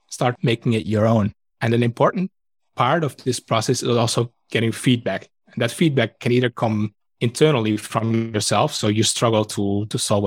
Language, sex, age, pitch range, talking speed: English, male, 20-39, 105-120 Hz, 180 wpm